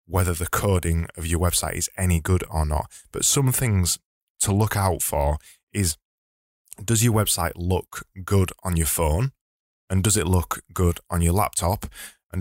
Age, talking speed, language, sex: 20-39, 175 wpm, English, male